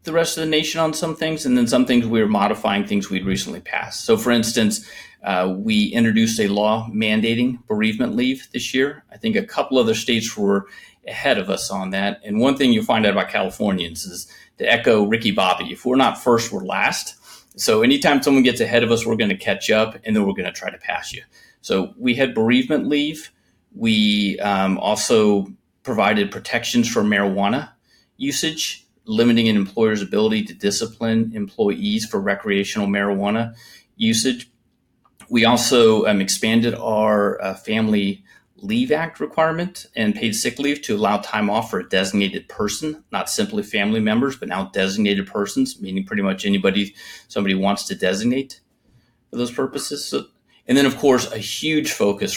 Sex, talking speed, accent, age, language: male, 175 wpm, American, 30-49, English